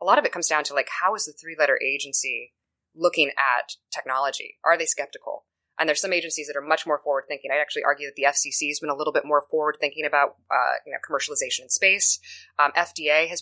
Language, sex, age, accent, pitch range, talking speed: English, female, 20-39, American, 145-175 Hz, 230 wpm